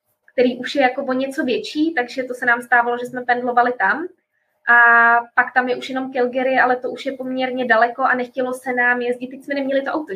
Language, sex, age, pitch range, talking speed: Czech, female, 20-39, 230-255 Hz, 230 wpm